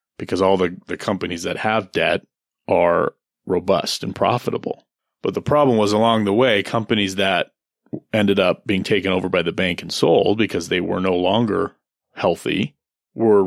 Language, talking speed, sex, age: English, 170 wpm, male, 30-49